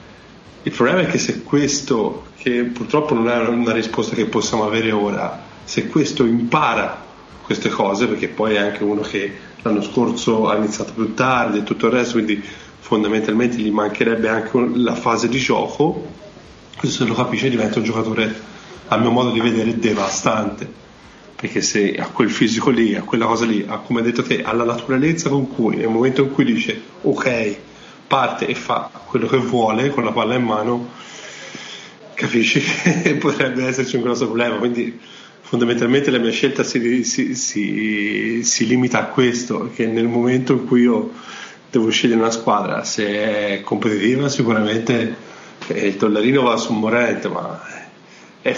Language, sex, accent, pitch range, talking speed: Italian, male, native, 110-125 Hz, 165 wpm